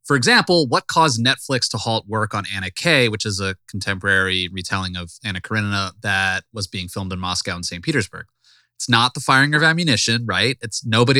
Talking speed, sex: 200 wpm, male